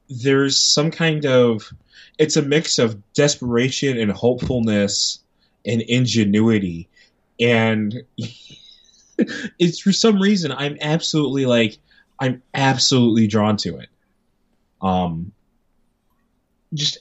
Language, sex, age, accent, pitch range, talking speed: English, male, 20-39, American, 105-150 Hz, 100 wpm